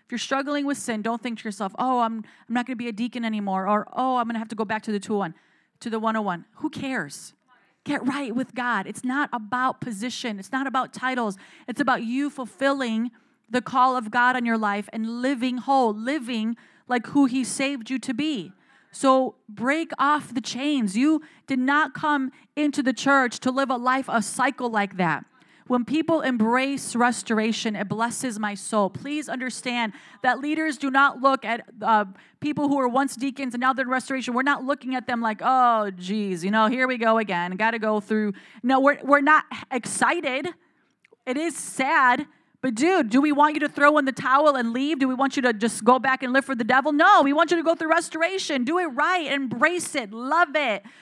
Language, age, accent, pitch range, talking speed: English, 30-49, American, 225-280 Hz, 215 wpm